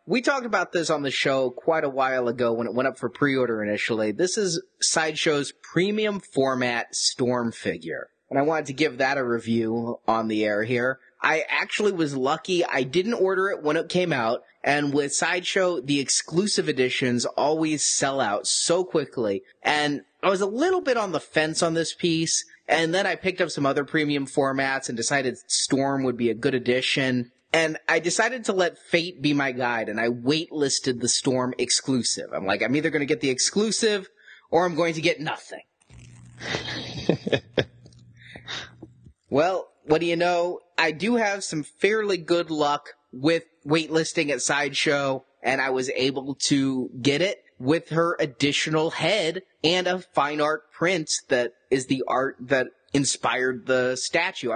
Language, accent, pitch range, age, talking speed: English, American, 130-170 Hz, 20-39, 175 wpm